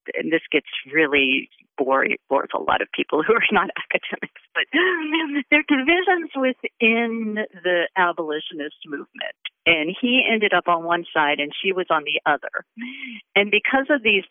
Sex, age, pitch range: female, 50-69, 175-240 Hz